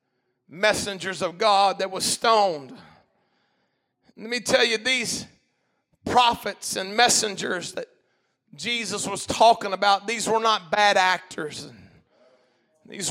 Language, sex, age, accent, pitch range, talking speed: English, male, 40-59, American, 220-285 Hz, 115 wpm